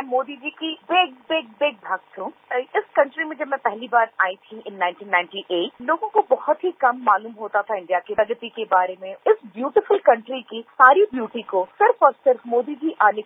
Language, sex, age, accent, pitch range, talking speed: Hindi, female, 40-59, native, 195-255 Hz, 210 wpm